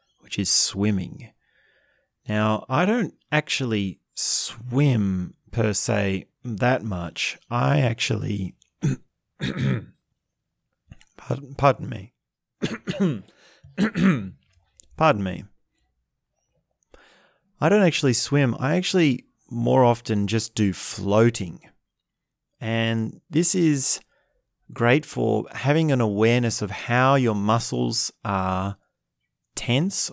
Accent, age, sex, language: Australian, 30-49, male, English